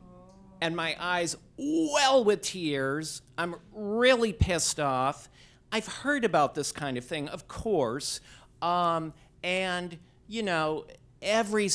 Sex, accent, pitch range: male, American, 135-180 Hz